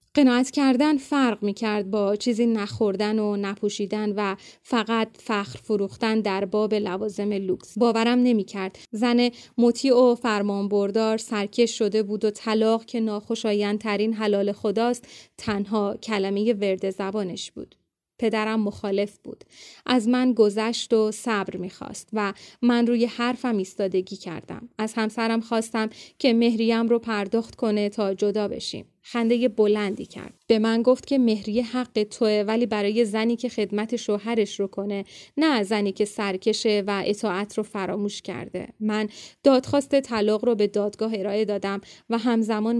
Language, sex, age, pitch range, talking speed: Persian, female, 30-49, 205-235 Hz, 145 wpm